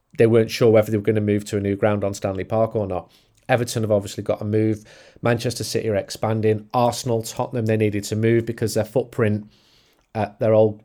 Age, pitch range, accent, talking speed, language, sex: 30-49, 105-125 Hz, British, 220 wpm, English, male